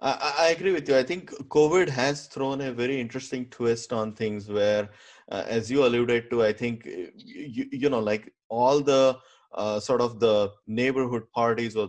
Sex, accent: male, Indian